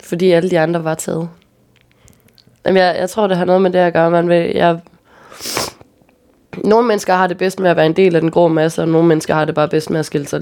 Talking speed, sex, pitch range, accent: 250 wpm, female, 145-175 Hz, native